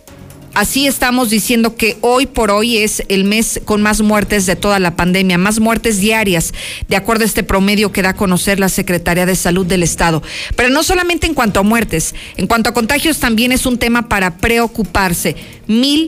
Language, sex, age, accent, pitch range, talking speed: Spanish, female, 40-59, Mexican, 190-230 Hz, 195 wpm